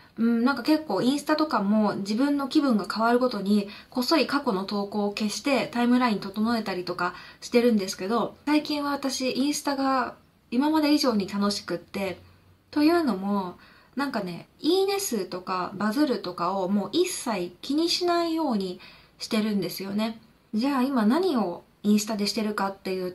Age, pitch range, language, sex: 20-39, 205-270 Hz, Japanese, female